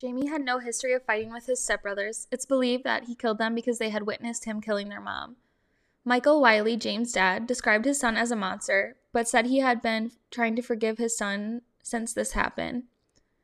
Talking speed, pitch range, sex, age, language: 205 wpm, 215-245 Hz, female, 10-29, English